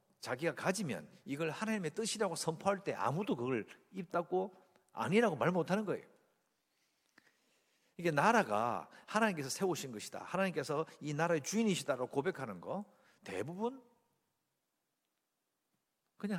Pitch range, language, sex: 125-210 Hz, English, male